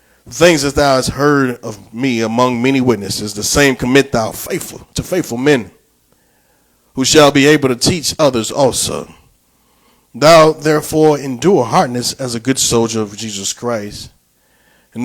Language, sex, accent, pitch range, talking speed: English, male, American, 110-145 Hz, 150 wpm